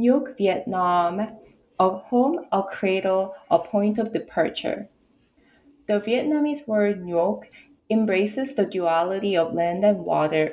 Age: 20-39